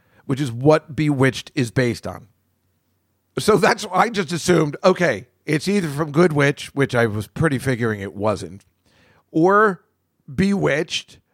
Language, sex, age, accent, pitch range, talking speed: English, male, 50-69, American, 135-210 Hz, 150 wpm